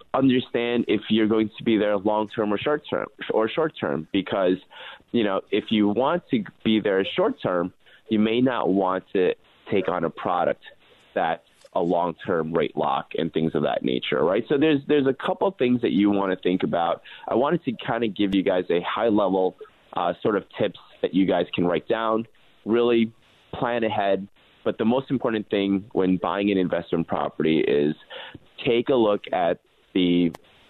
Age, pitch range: 30-49, 90-115 Hz